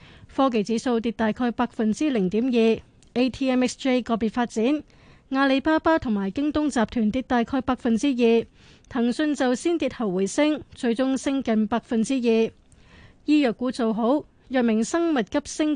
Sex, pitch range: female, 225-270 Hz